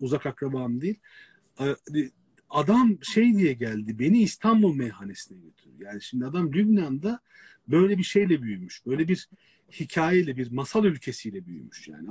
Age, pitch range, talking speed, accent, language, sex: 40-59, 140-200 Hz, 135 wpm, native, Turkish, male